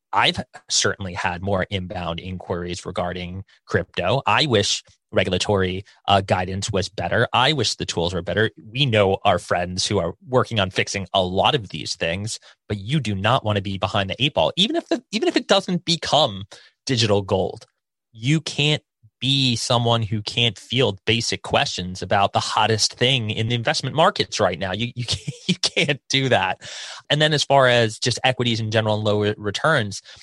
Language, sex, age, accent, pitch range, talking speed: English, male, 30-49, American, 95-120 Hz, 185 wpm